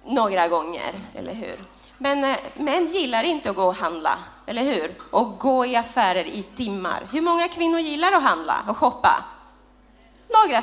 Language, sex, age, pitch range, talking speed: Swedish, female, 30-49, 240-345 Hz, 165 wpm